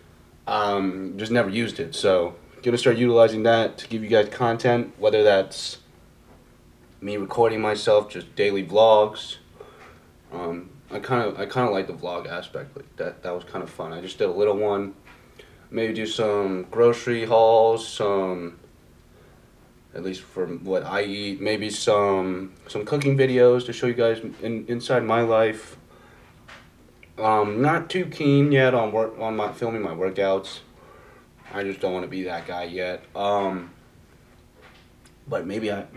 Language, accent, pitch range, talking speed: English, American, 95-115 Hz, 165 wpm